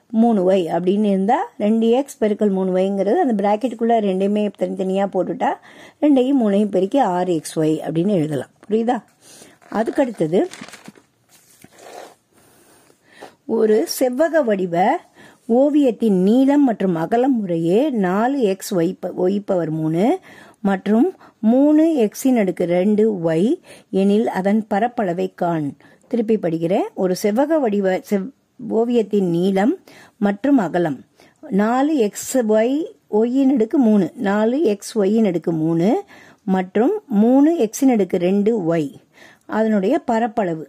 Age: 50-69